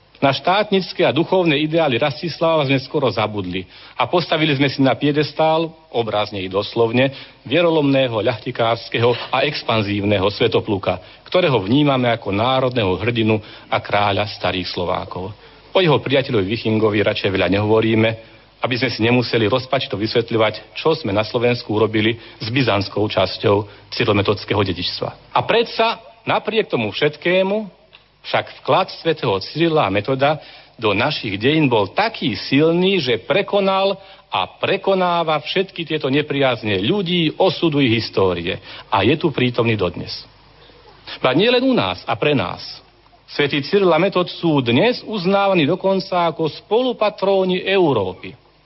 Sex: male